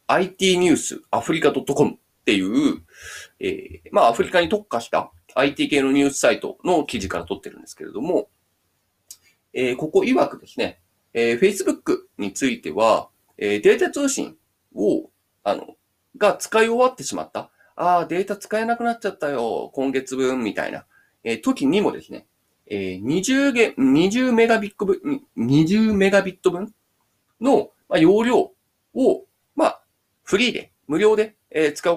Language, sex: Japanese, male